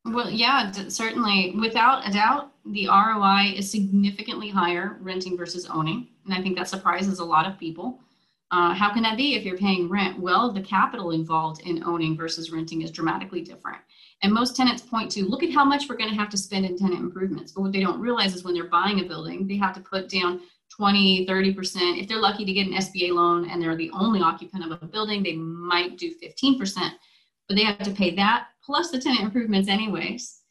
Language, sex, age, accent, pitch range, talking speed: English, female, 30-49, American, 175-215 Hz, 220 wpm